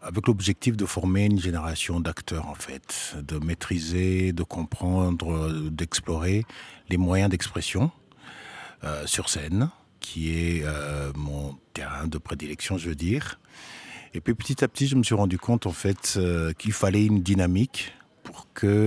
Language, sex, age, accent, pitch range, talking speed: French, male, 50-69, French, 80-100 Hz, 155 wpm